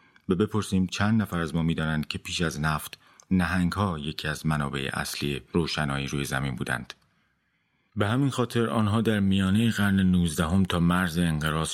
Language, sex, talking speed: Persian, male, 160 wpm